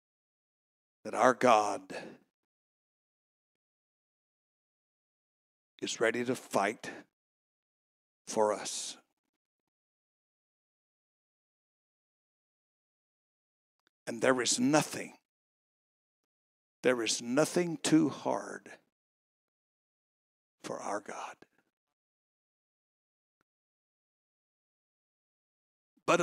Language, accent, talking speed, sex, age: English, American, 50 wpm, male, 60-79